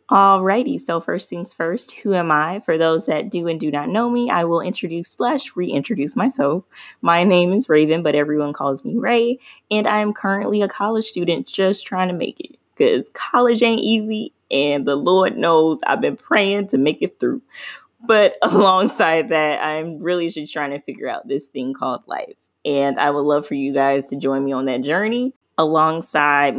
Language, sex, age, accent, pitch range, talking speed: English, female, 10-29, American, 140-180 Hz, 195 wpm